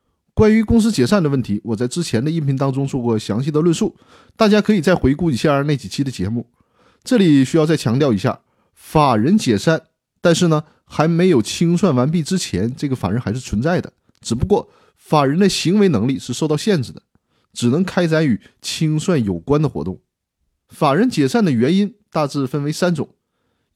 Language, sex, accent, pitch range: Chinese, male, native, 125-175 Hz